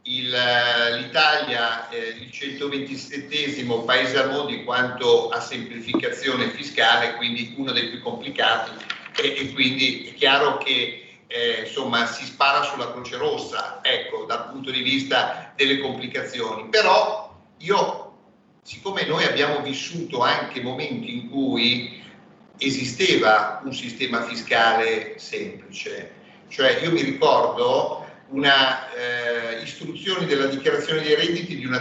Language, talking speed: Italian, 125 wpm